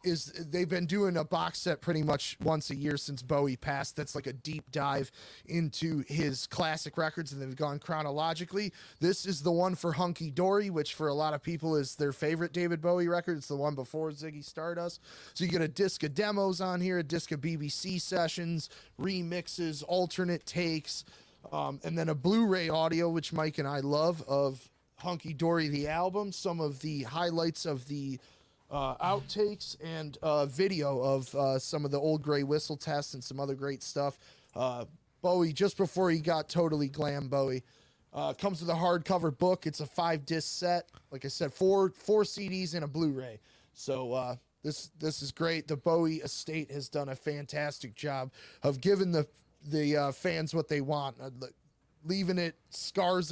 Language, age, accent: English, 20-39, American